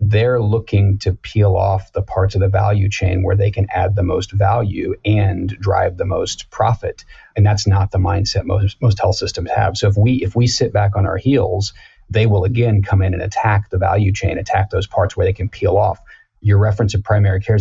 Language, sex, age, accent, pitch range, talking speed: English, male, 40-59, American, 95-105 Hz, 220 wpm